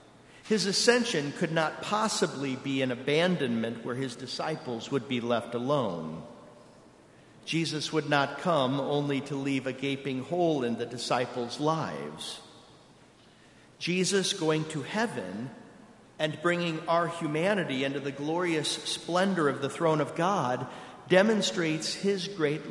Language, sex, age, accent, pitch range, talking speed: English, male, 50-69, American, 140-185 Hz, 130 wpm